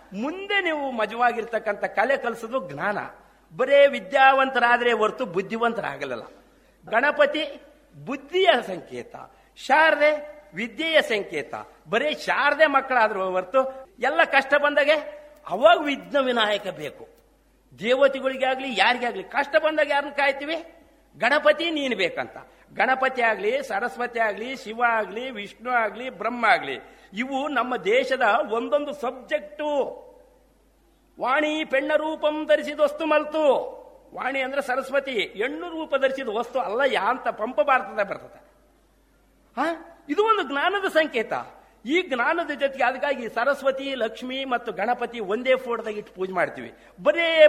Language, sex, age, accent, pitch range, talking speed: Kannada, male, 50-69, native, 235-300 Hz, 110 wpm